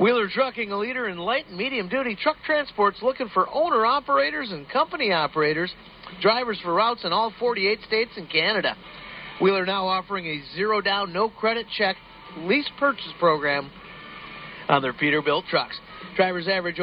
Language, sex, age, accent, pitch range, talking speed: English, male, 50-69, American, 175-240 Hz, 145 wpm